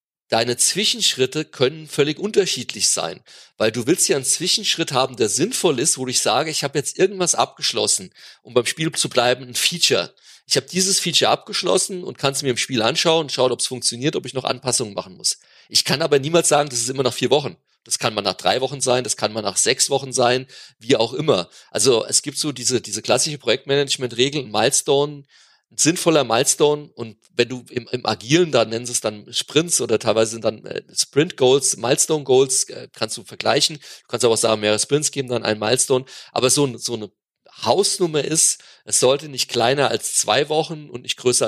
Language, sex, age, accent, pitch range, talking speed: German, male, 40-59, German, 120-155 Hz, 210 wpm